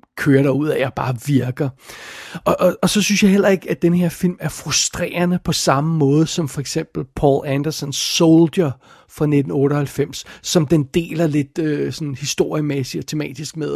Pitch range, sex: 145-195 Hz, male